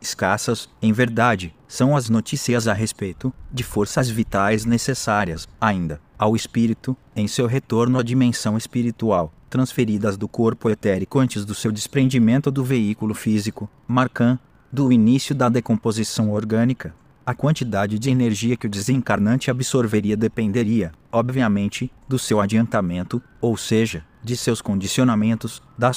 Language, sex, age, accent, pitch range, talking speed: Portuguese, male, 30-49, Brazilian, 105-125 Hz, 130 wpm